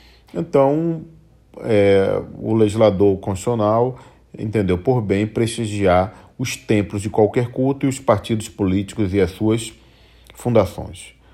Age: 40-59